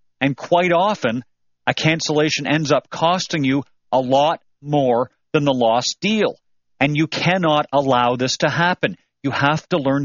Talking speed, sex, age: 160 wpm, male, 40-59